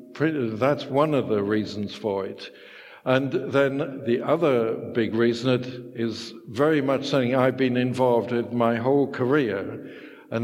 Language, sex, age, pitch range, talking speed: English, male, 60-79, 115-140 Hz, 150 wpm